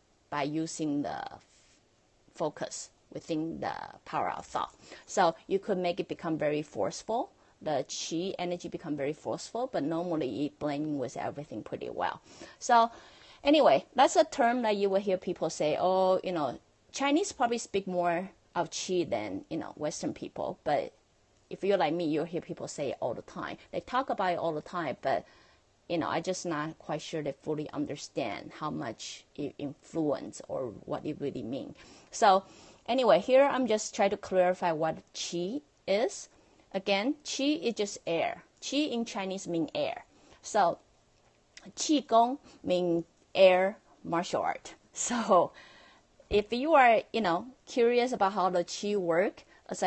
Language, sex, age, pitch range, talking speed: English, female, 30-49, 165-230 Hz, 165 wpm